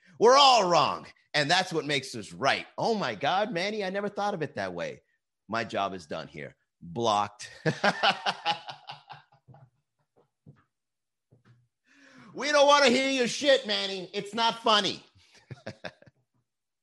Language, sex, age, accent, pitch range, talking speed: English, male, 30-49, American, 120-165 Hz, 130 wpm